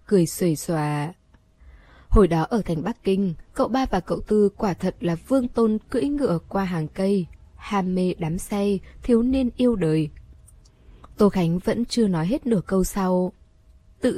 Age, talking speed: 20-39, 175 wpm